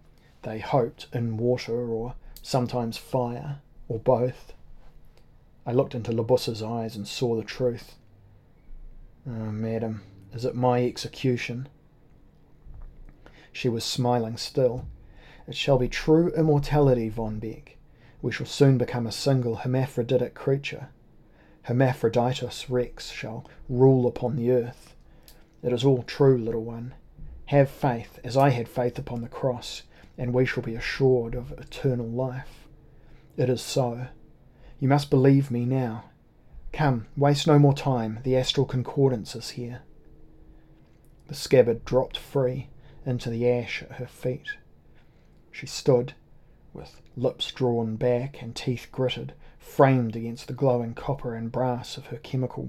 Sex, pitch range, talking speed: male, 115-135 Hz, 135 wpm